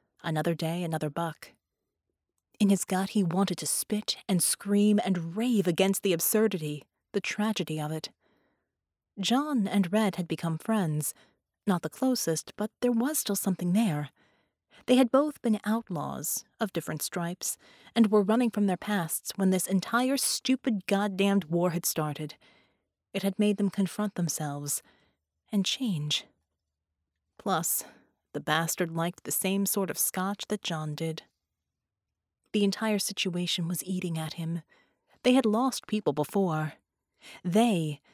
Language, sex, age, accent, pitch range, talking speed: English, female, 30-49, American, 160-205 Hz, 145 wpm